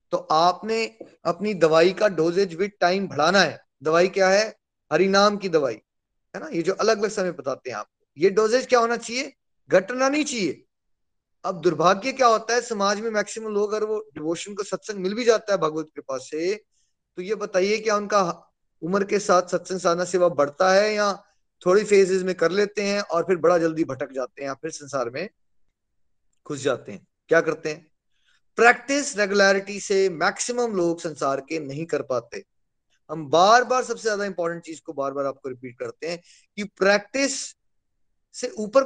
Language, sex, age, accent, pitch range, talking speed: Hindi, male, 20-39, native, 170-230 Hz, 180 wpm